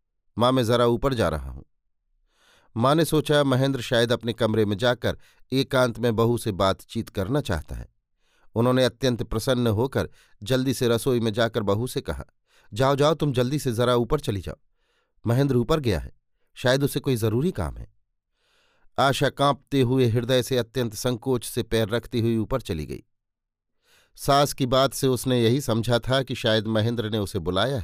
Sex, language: male, Hindi